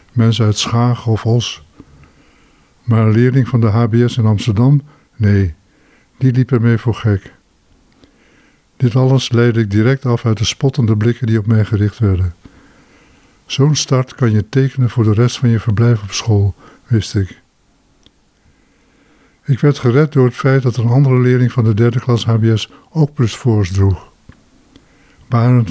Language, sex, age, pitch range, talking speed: Dutch, male, 60-79, 110-125 Hz, 160 wpm